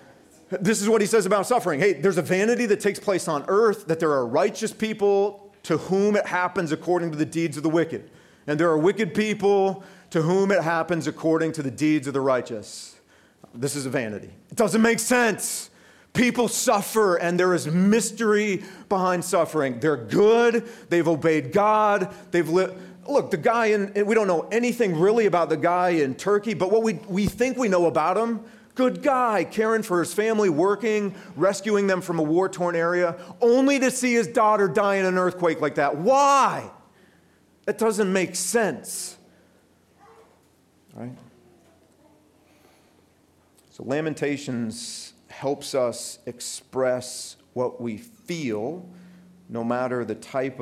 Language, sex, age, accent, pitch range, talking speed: English, male, 40-59, American, 150-210 Hz, 160 wpm